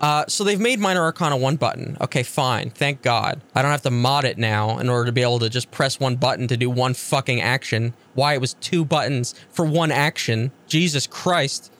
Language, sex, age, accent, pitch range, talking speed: English, male, 20-39, American, 120-150 Hz, 225 wpm